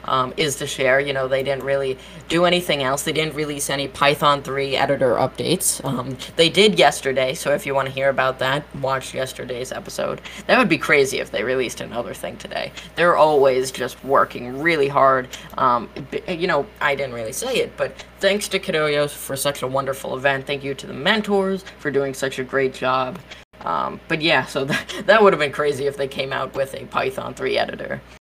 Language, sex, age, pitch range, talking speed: English, female, 20-39, 140-195 Hz, 210 wpm